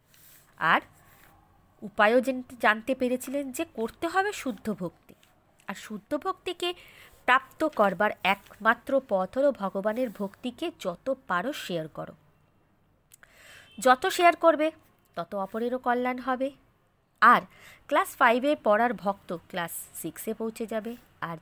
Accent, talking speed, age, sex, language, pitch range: native, 110 wpm, 20-39, female, Bengali, 190-280 Hz